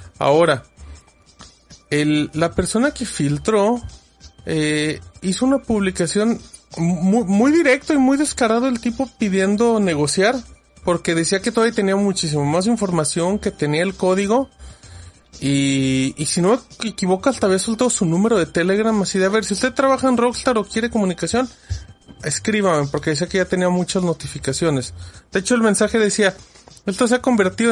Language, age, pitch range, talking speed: Spanish, 30-49, 145-210 Hz, 160 wpm